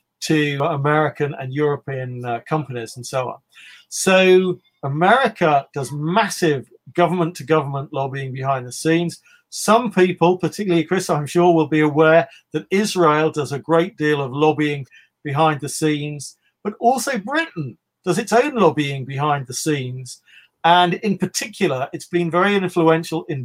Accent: British